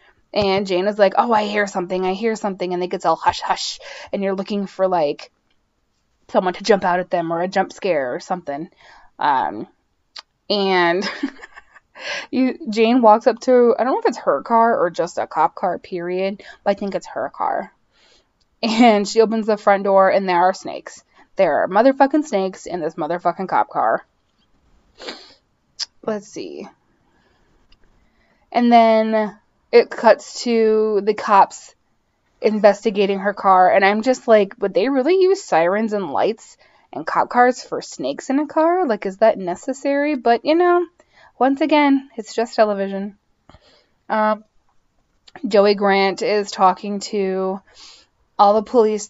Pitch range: 195-235 Hz